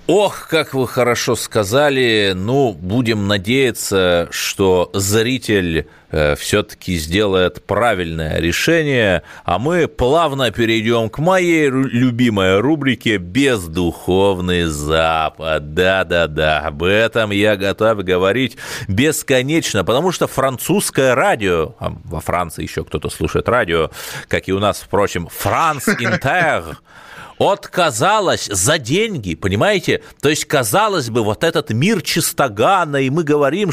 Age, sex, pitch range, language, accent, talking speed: 30-49, male, 95-135 Hz, Russian, native, 115 wpm